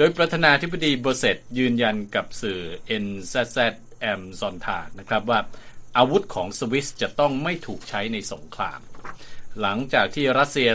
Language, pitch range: Thai, 115-140 Hz